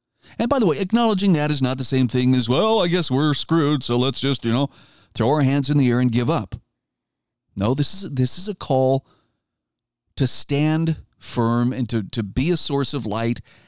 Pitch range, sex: 120-155 Hz, male